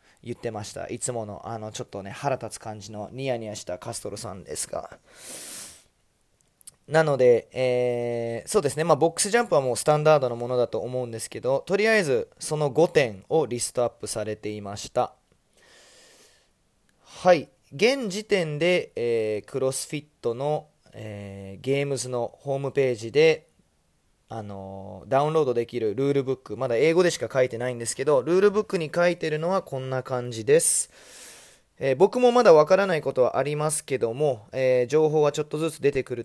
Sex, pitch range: male, 115-155 Hz